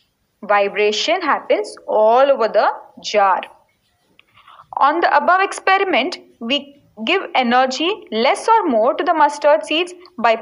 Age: 20-39